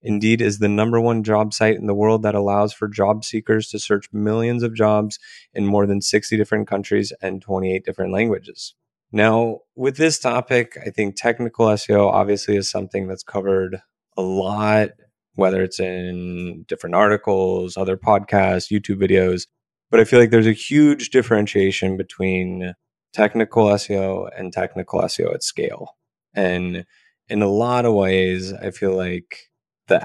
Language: English